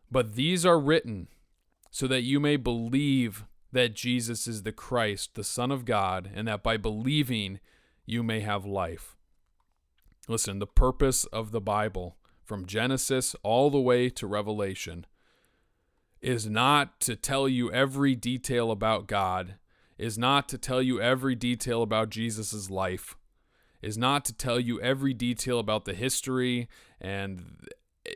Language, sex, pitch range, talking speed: English, male, 100-125 Hz, 145 wpm